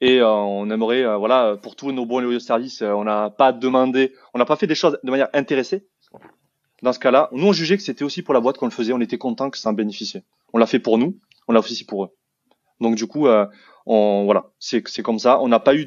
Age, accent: 20-39, French